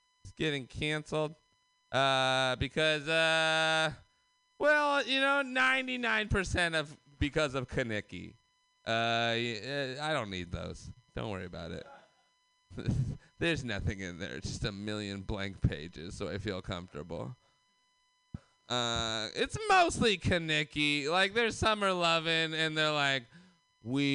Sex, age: male, 30-49